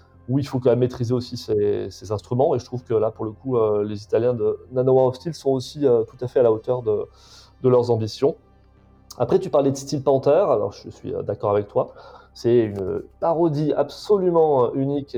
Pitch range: 115-155 Hz